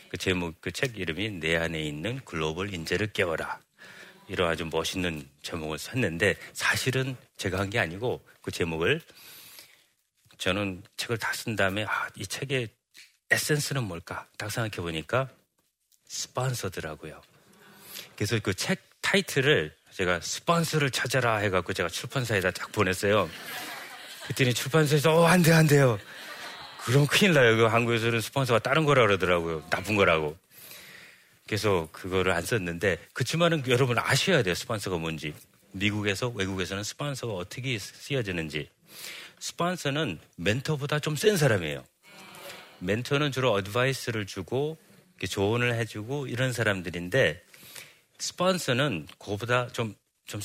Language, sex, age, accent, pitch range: Korean, male, 40-59, native, 95-140 Hz